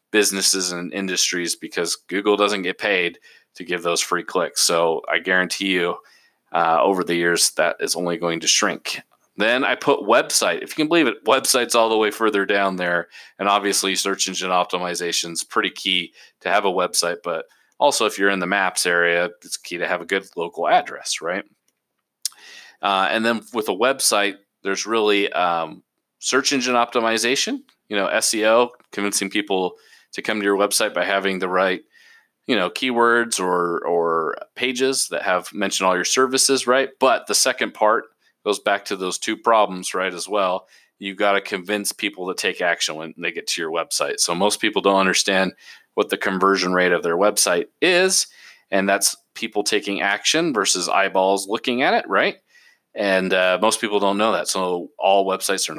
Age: 30-49